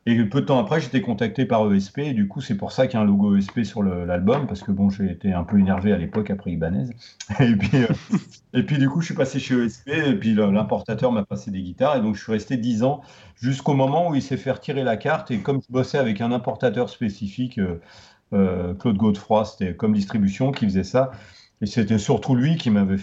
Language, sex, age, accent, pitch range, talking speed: French, male, 40-59, French, 100-130 Hz, 245 wpm